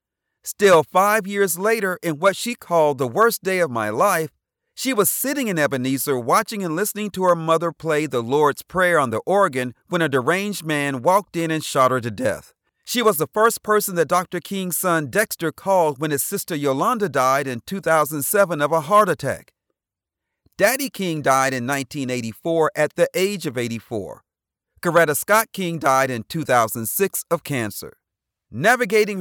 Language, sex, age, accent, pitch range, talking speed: English, male, 40-59, American, 135-190 Hz, 175 wpm